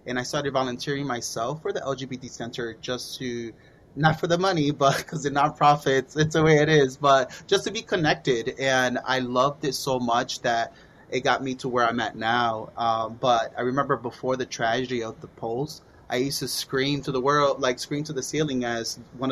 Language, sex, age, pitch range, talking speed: English, male, 20-39, 125-145 Hz, 210 wpm